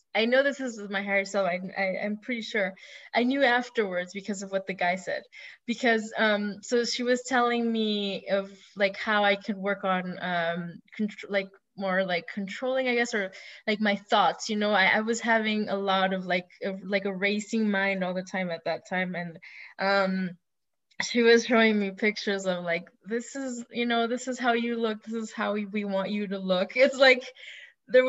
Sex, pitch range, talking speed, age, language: female, 195-250 Hz, 210 wpm, 20-39, English